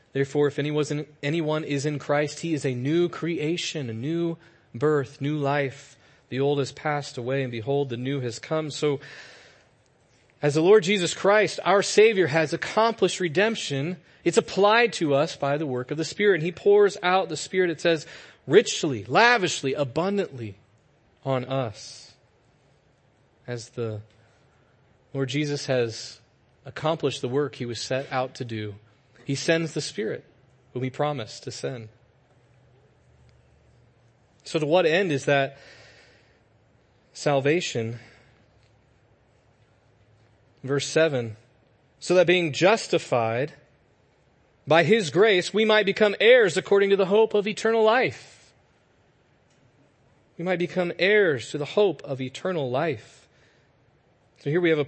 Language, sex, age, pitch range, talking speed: English, male, 30-49, 125-170 Hz, 140 wpm